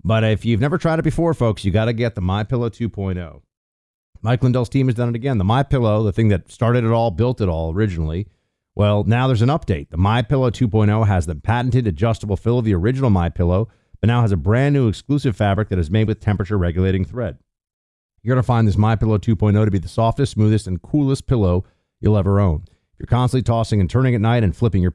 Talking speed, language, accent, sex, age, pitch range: 225 wpm, English, American, male, 50-69, 95-125 Hz